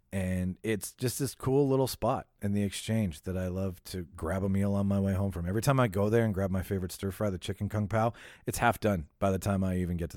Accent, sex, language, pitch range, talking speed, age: American, male, English, 90-110 Hz, 270 wpm, 40-59